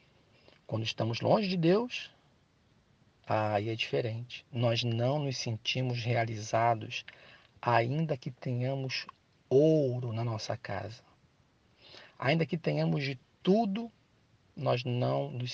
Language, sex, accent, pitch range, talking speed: Portuguese, male, Brazilian, 110-135 Hz, 110 wpm